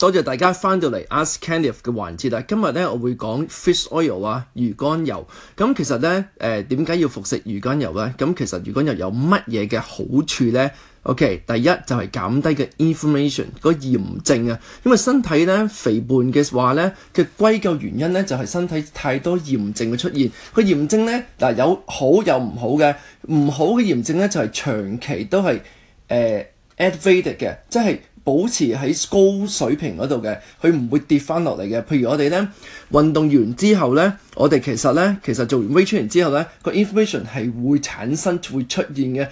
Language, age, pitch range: Chinese, 20-39, 130-190 Hz